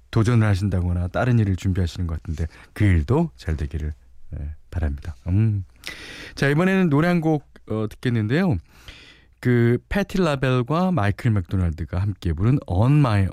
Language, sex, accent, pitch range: Korean, male, native, 85-140 Hz